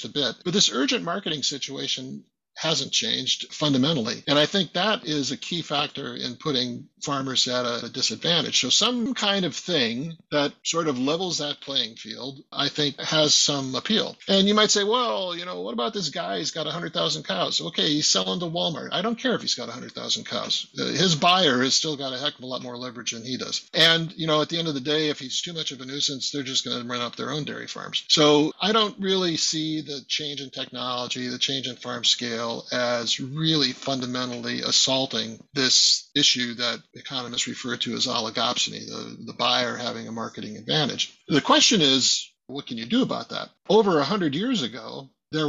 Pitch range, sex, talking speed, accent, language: 125-170 Hz, male, 210 wpm, American, English